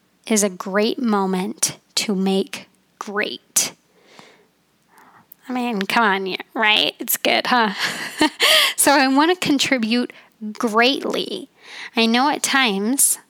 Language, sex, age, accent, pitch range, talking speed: English, female, 20-39, American, 215-270 Hz, 115 wpm